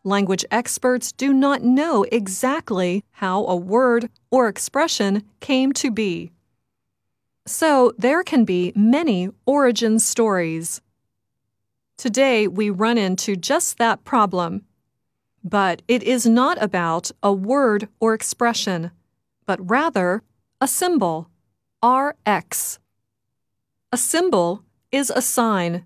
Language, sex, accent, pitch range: Chinese, female, American, 180-255 Hz